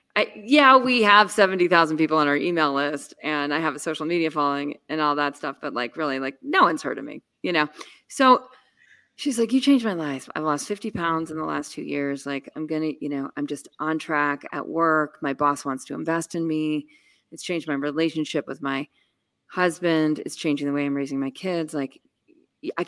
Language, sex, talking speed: English, female, 220 wpm